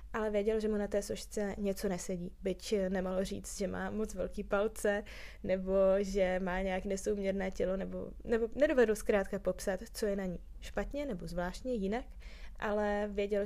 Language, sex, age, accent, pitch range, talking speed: Czech, female, 20-39, native, 190-220 Hz, 170 wpm